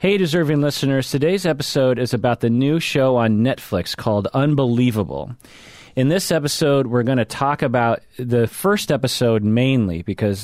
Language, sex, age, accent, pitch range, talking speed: English, male, 30-49, American, 105-140 Hz, 155 wpm